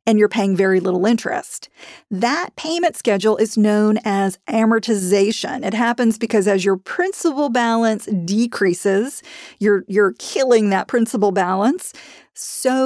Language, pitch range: English, 200-255 Hz